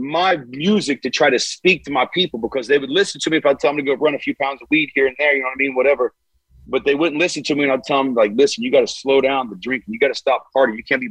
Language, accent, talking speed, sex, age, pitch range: English, American, 340 wpm, male, 40-59, 110-150 Hz